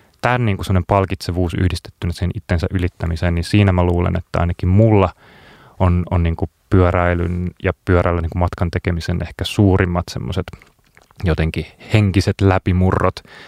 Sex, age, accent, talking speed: male, 30-49, native, 140 wpm